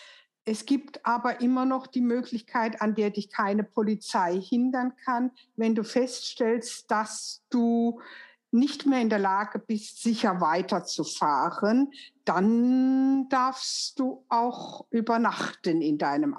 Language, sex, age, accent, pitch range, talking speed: German, female, 60-79, German, 195-240 Hz, 125 wpm